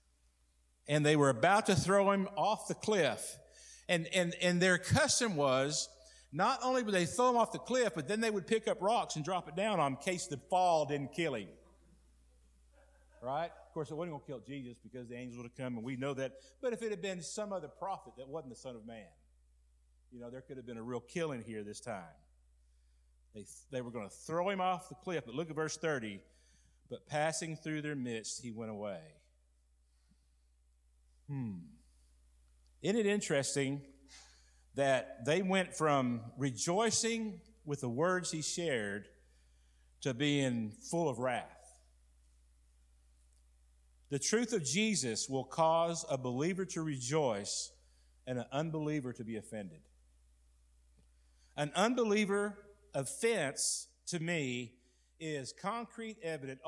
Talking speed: 165 wpm